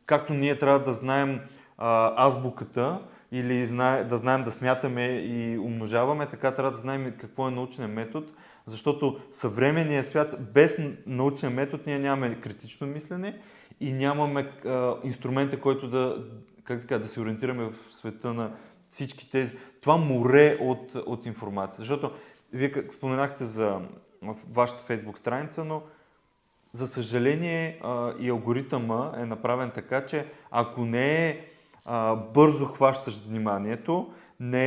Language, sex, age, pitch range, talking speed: Bulgarian, male, 20-39, 115-140 Hz, 125 wpm